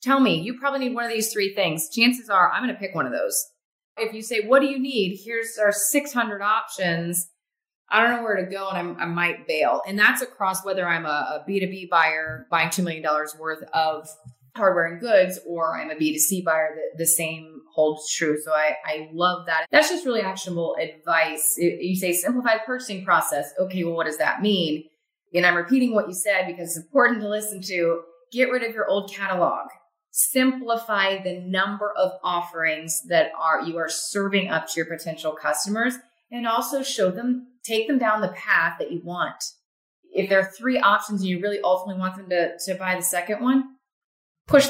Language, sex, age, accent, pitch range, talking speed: English, female, 30-49, American, 160-220 Hz, 200 wpm